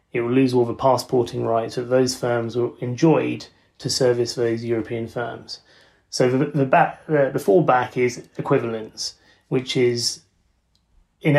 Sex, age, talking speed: male, 30-49, 155 wpm